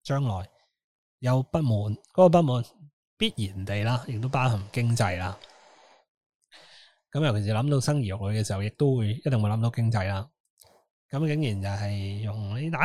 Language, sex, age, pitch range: Chinese, male, 20-39, 105-145 Hz